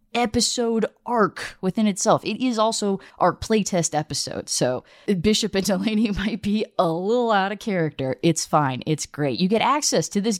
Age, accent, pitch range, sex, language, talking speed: 20-39, American, 170-255 Hz, female, English, 175 wpm